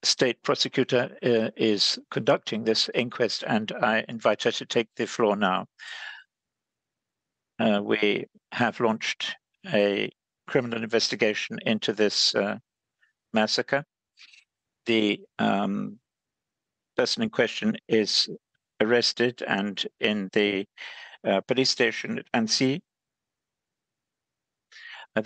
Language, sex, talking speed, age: English, male, 100 wpm, 60-79